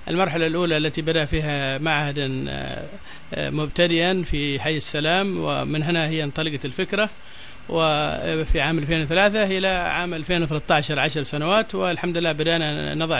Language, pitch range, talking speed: Arabic, 145-175 Hz, 125 wpm